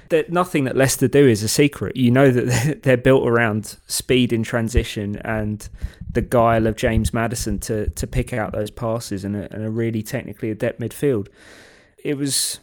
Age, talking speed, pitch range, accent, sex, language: 20-39, 175 wpm, 110-130 Hz, British, male, English